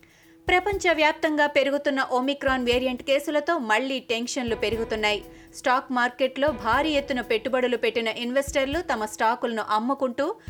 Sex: female